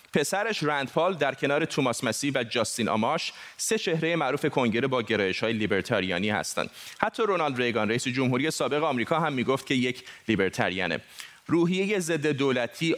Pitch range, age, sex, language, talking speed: 120-160 Hz, 30-49, male, Persian, 155 wpm